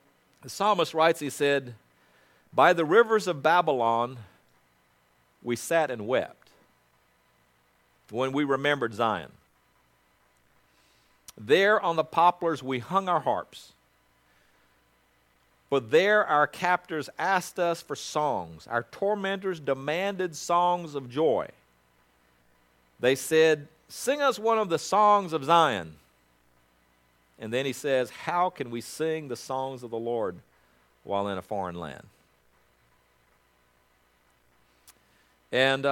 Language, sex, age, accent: English, male, 50-69, American